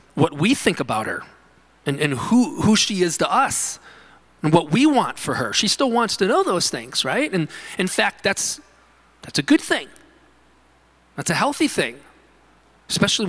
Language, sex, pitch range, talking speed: English, male, 145-220 Hz, 180 wpm